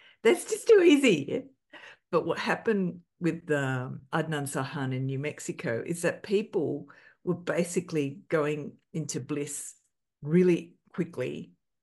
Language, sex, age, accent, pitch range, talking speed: English, female, 50-69, Australian, 135-170 Hz, 120 wpm